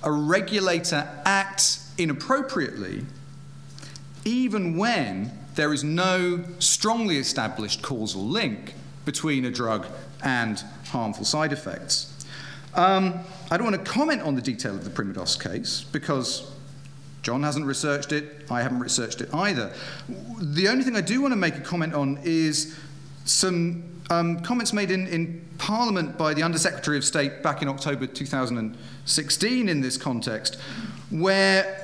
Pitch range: 135-180 Hz